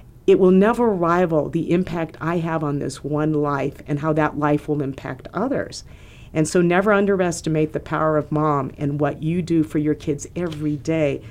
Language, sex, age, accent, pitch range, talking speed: English, female, 50-69, American, 150-185 Hz, 190 wpm